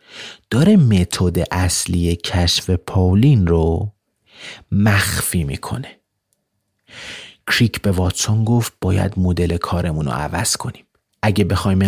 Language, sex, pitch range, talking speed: Persian, male, 90-110 Hz, 100 wpm